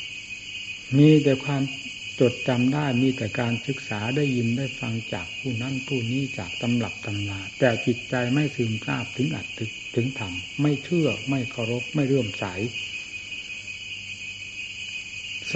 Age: 60-79